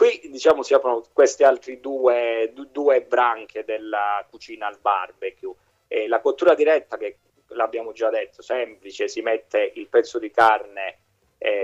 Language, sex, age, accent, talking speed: Italian, male, 30-49, native, 150 wpm